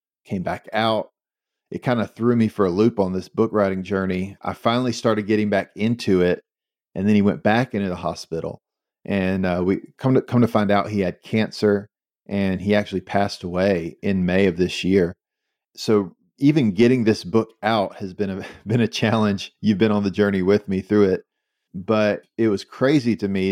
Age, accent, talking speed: 40-59, American, 205 wpm